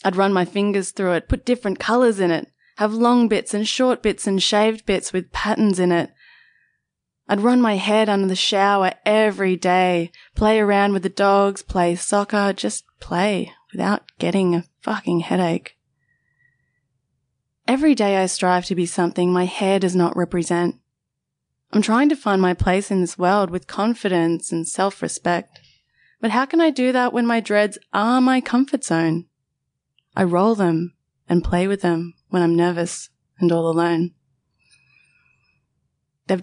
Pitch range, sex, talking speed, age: 170-210 Hz, female, 165 wpm, 20-39